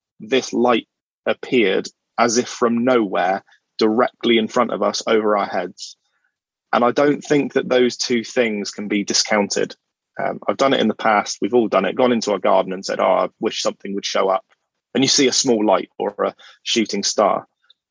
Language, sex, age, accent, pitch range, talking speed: English, male, 20-39, British, 105-125 Hz, 200 wpm